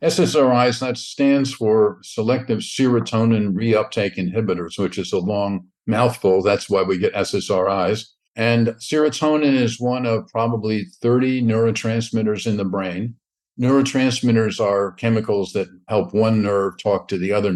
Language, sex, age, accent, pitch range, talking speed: English, male, 50-69, American, 100-125 Hz, 135 wpm